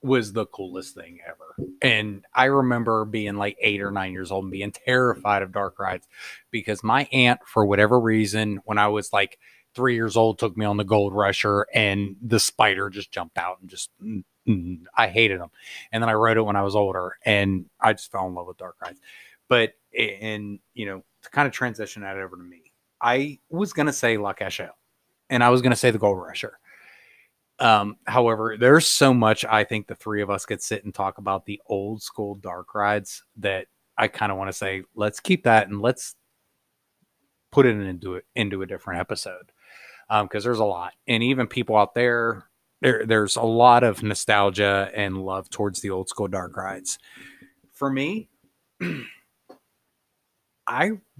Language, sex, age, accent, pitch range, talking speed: English, male, 30-49, American, 100-120 Hz, 195 wpm